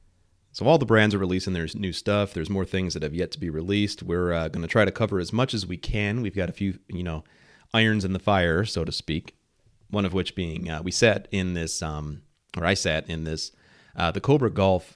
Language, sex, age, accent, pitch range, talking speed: English, male, 30-49, American, 85-105 Hz, 250 wpm